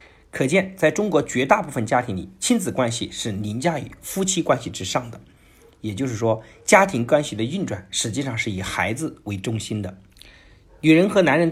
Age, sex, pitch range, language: 50-69, male, 100-150 Hz, Chinese